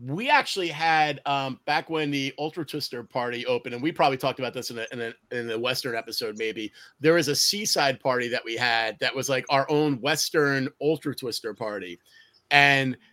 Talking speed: 205 wpm